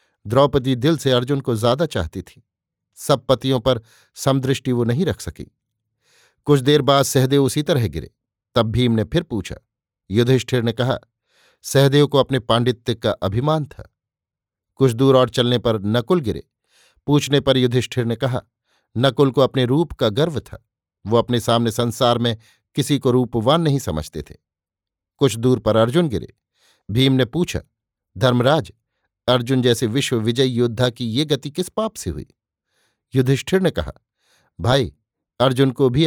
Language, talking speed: Hindi, 160 wpm